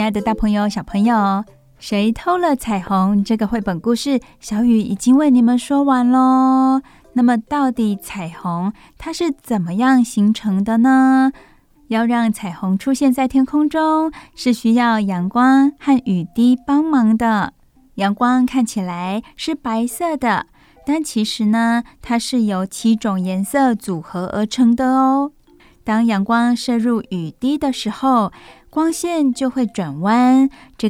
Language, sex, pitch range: Chinese, female, 205-260 Hz